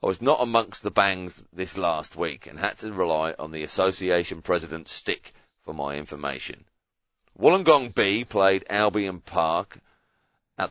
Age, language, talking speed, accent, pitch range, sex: 40-59, English, 150 wpm, British, 85-110 Hz, male